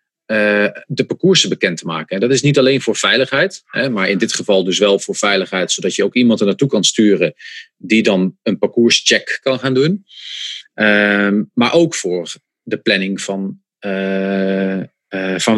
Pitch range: 95-120 Hz